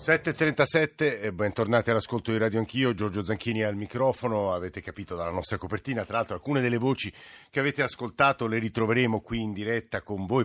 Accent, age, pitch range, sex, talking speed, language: native, 50-69, 100-120 Hz, male, 180 wpm, Italian